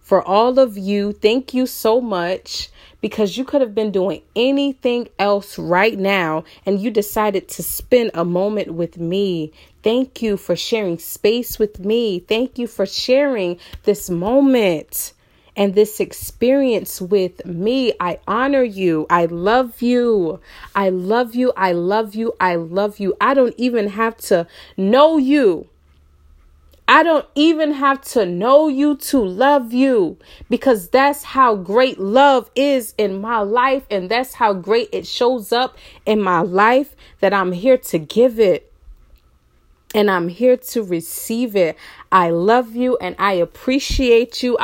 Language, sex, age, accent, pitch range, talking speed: English, female, 30-49, American, 190-260 Hz, 155 wpm